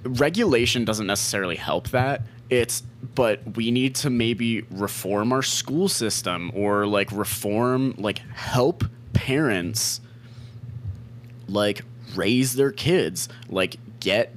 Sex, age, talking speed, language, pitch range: male, 20-39, 115 wpm, English, 95-120 Hz